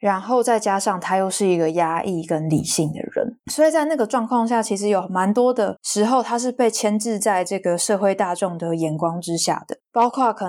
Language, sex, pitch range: Chinese, female, 180-230 Hz